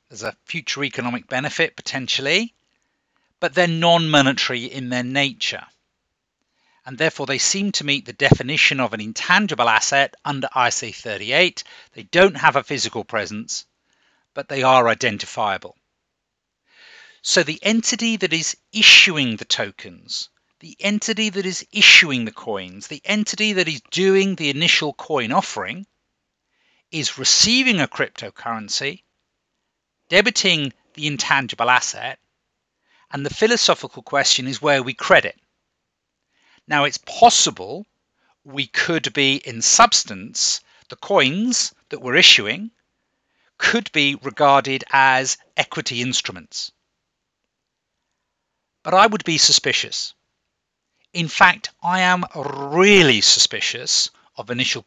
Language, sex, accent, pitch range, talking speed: English, male, British, 135-195 Hz, 120 wpm